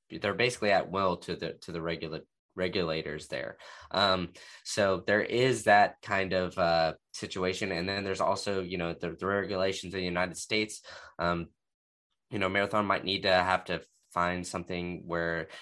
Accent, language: American, English